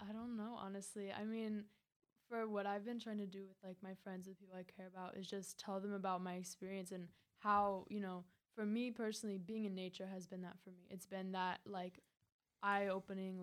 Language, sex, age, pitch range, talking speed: English, female, 10-29, 185-205 Hz, 220 wpm